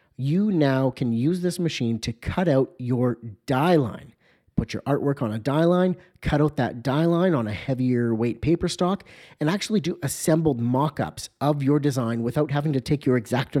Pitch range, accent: 115-155 Hz, American